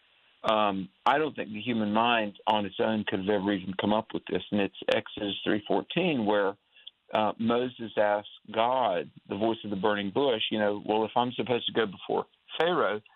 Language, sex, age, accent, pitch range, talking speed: English, male, 50-69, American, 105-125 Hz, 195 wpm